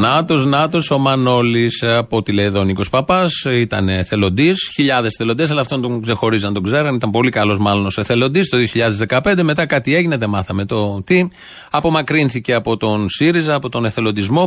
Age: 30-49